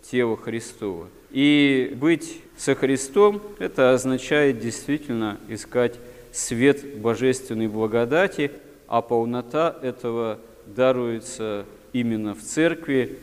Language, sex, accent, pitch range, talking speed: Russian, male, native, 115-140 Hz, 90 wpm